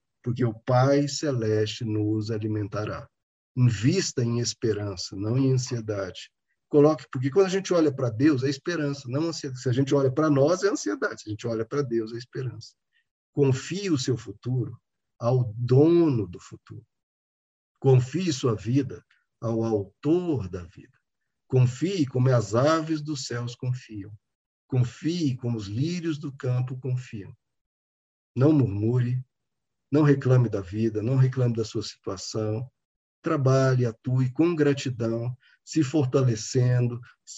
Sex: male